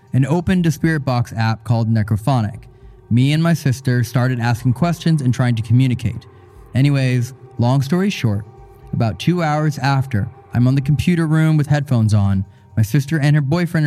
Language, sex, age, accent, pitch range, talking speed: English, male, 20-39, American, 115-150 Hz, 175 wpm